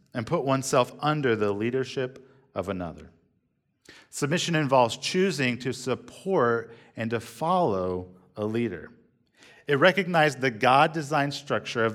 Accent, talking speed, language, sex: American, 120 wpm, English, male